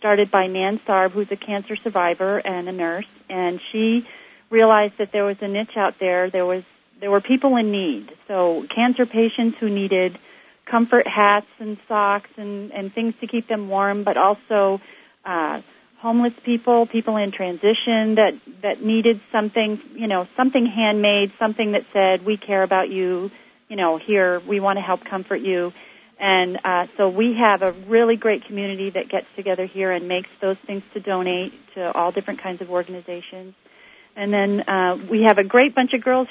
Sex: female